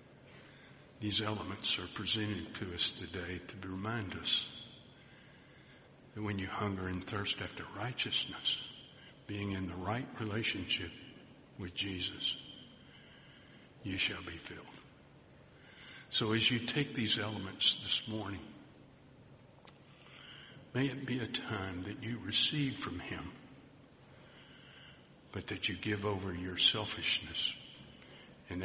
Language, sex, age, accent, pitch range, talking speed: English, male, 60-79, American, 95-130 Hz, 115 wpm